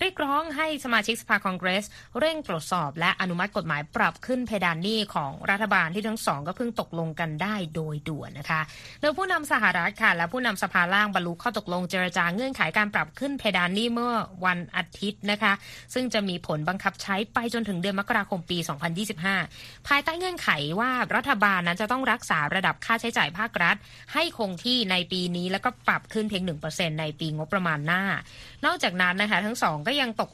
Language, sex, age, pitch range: Thai, female, 20-39, 175-235 Hz